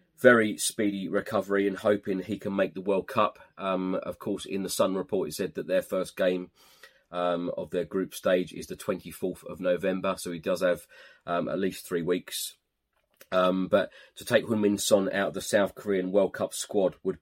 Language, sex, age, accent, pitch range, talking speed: English, male, 30-49, British, 85-95 Hz, 200 wpm